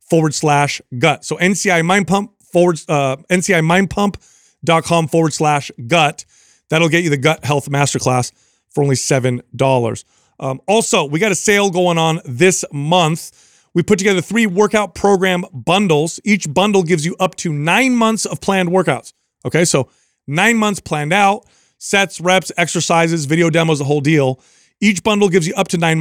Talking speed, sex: 170 wpm, male